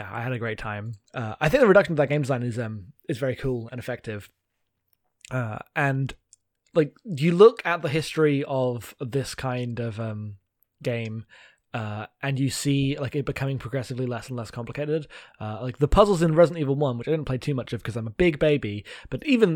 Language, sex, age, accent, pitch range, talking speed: English, male, 20-39, British, 115-150 Hz, 215 wpm